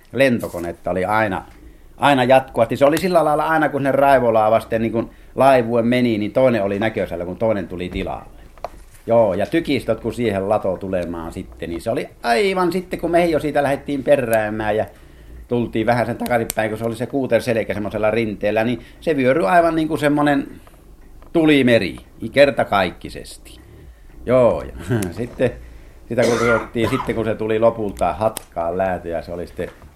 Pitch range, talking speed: 100-135 Hz, 150 wpm